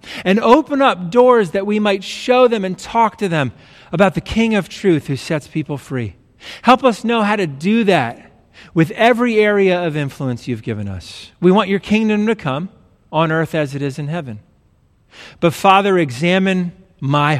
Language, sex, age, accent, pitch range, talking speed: English, male, 40-59, American, 130-190 Hz, 185 wpm